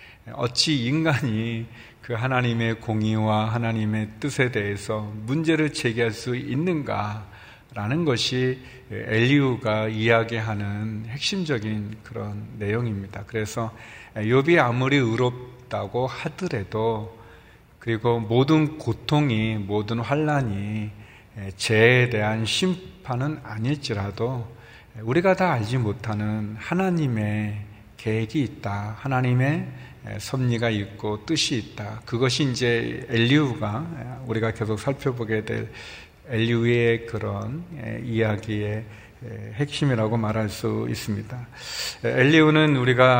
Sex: male